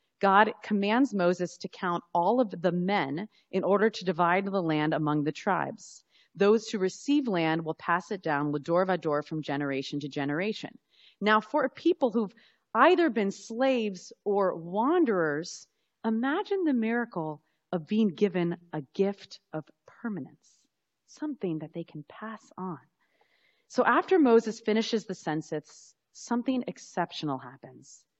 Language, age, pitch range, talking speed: English, 30-49, 160-230 Hz, 145 wpm